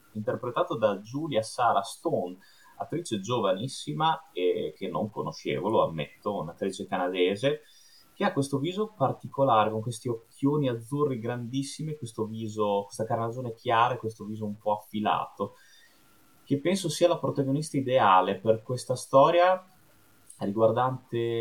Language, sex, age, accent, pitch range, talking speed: Italian, male, 30-49, native, 100-130 Hz, 130 wpm